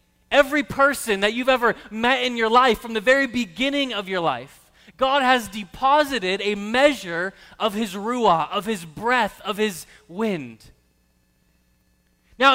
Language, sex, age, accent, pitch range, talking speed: English, male, 30-49, American, 195-265 Hz, 150 wpm